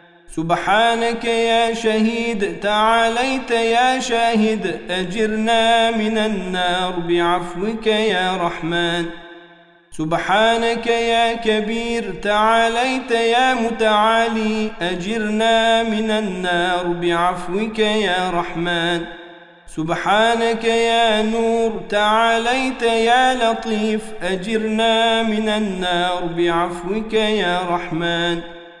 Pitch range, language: 175-230 Hz, Turkish